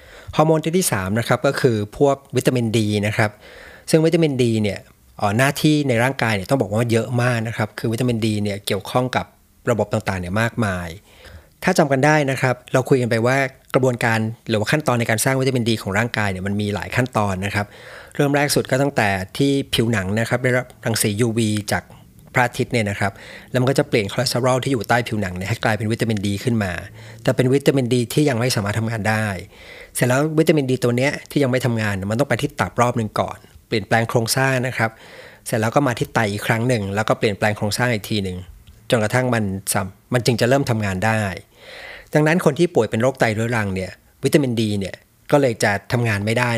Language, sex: Thai, male